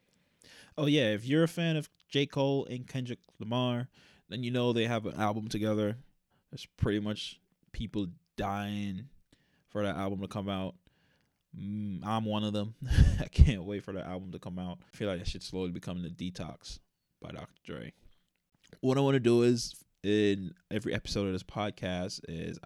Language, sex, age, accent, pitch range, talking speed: English, male, 20-39, American, 90-110 Hz, 185 wpm